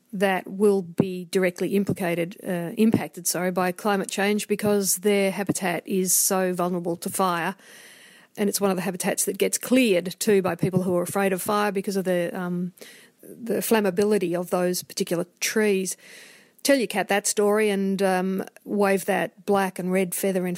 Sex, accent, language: female, Australian, English